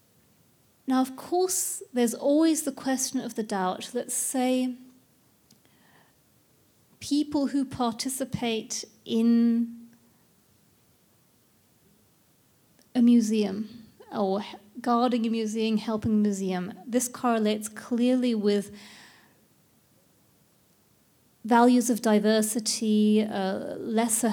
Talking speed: 85 wpm